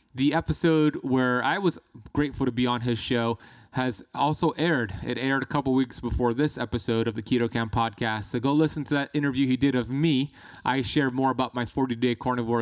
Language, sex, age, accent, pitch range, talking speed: English, male, 20-39, American, 115-145 Hz, 210 wpm